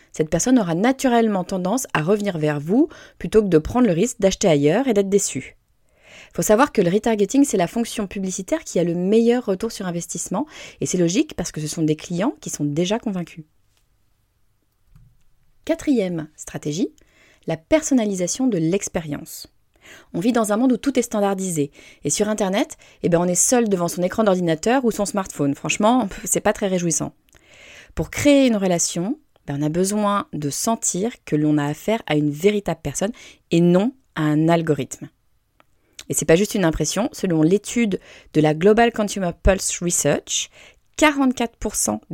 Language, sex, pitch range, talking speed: French, female, 155-225 Hz, 175 wpm